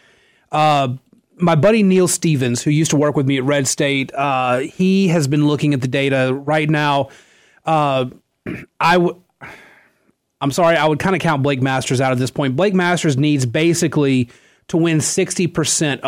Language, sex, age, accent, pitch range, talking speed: English, male, 30-49, American, 135-170 Hz, 175 wpm